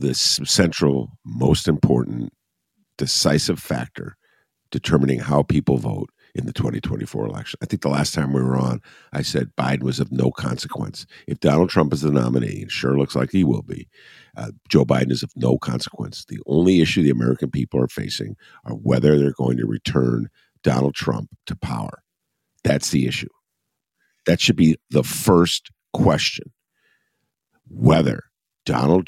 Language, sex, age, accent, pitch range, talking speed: English, male, 50-69, American, 65-95 Hz, 160 wpm